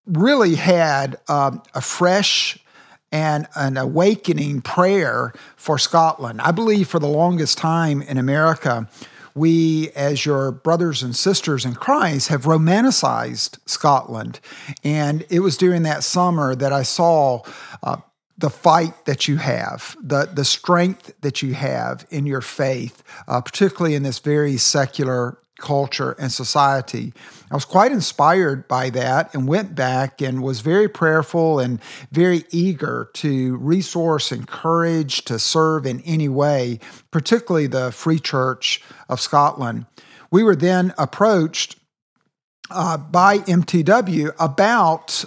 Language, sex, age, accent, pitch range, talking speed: English, male, 50-69, American, 135-170 Hz, 135 wpm